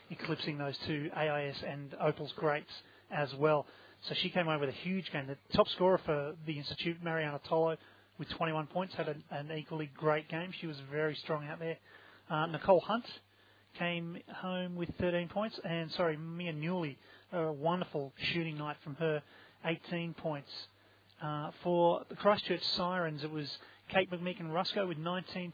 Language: English